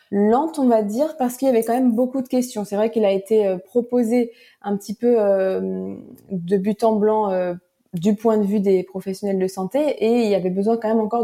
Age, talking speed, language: 20-39, 240 wpm, French